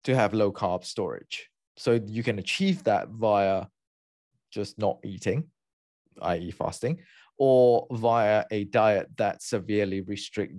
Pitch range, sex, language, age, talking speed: 95-120 Hz, male, English, 20-39, 130 wpm